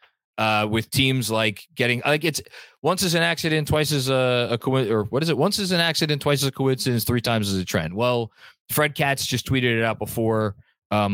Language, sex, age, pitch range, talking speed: English, male, 20-39, 105-135 Hz, 220 wpm